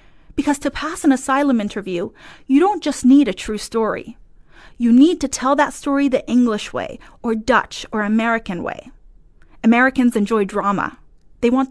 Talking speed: 165 wpm